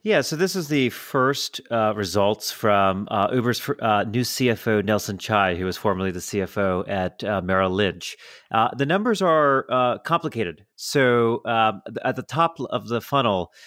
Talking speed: 180 wpm